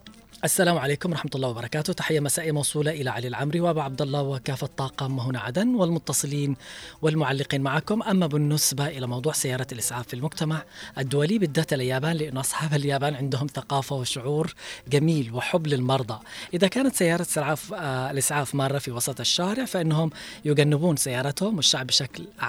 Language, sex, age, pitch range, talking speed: Arabic, female, 20-39, 130-160 Hz, 140 wpm